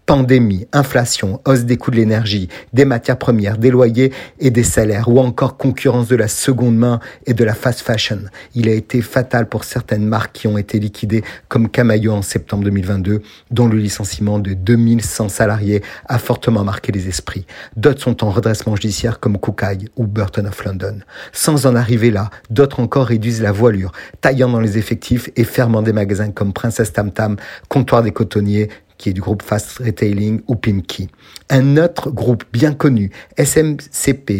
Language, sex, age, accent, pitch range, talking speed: French, male, 50-69, French, 105-130 Hz, 180 wpm